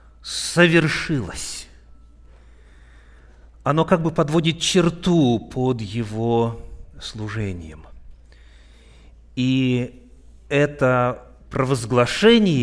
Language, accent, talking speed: Russian, native, 55 wpm